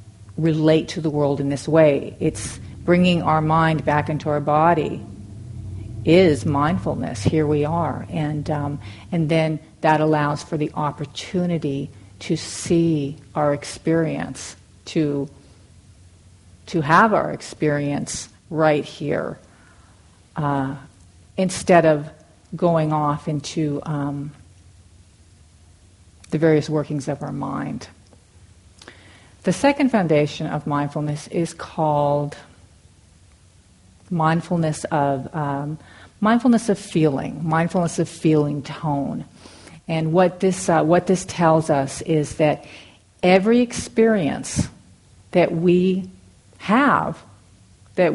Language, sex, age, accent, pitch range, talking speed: English, female, 50-69, American, 105-165 Hz, 105 wpm